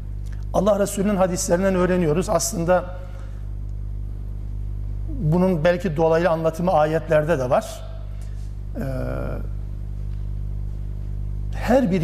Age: 60-79